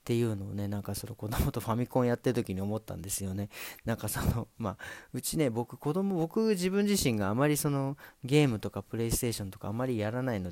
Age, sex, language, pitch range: 40-59, male, Japanese, 105-130 Hz